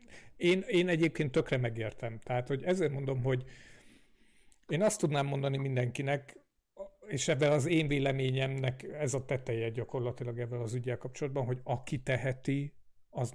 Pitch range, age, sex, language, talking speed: 120-145 Hz, 50-69, male, Hungarian, 145 wpm